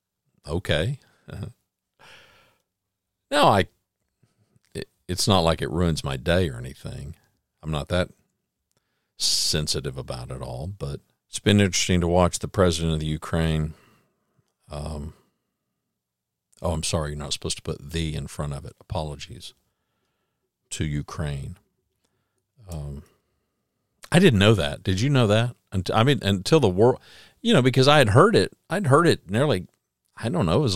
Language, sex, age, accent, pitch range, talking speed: English, male, 50-69, American, 80-105 Hz, 150 wpm